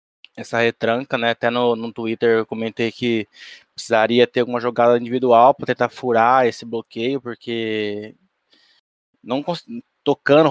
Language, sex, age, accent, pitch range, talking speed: Portuguese, male, 20-39, Brazilian, 115-135 Hz, 130 wpm